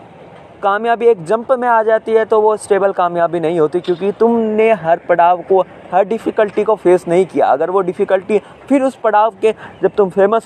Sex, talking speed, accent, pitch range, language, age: male, 195 wpm, native, 135-195 Hz, Hindi, 20-39